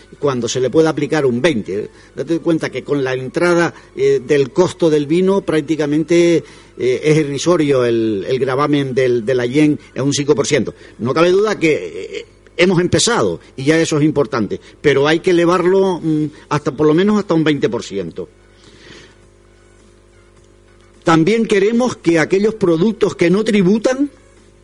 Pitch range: 135-185 Hz